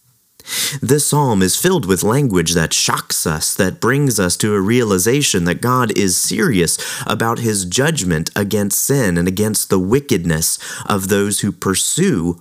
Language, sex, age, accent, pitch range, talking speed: English, male, 30-49, American, 90-125 Hz, 155 wpm